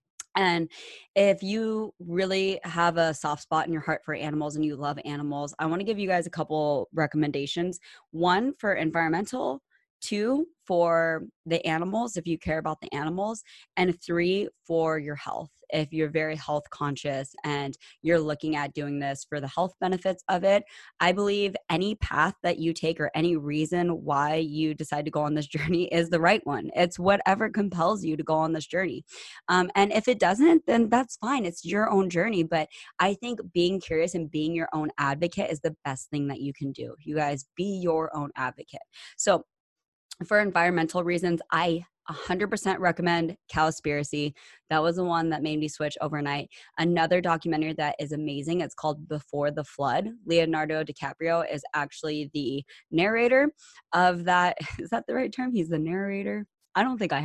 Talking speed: 185 wpm